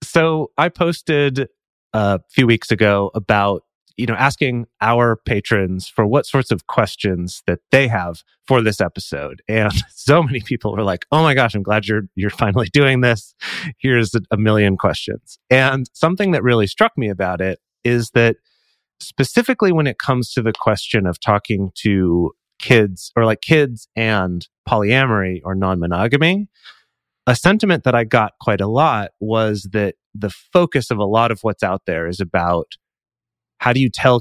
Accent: American